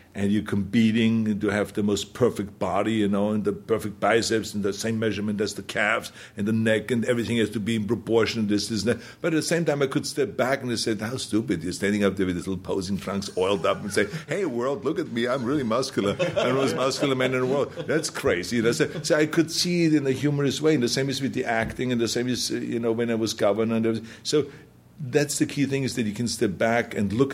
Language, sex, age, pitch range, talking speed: English, male, 60-79, 105-120 Hz, 270 wpm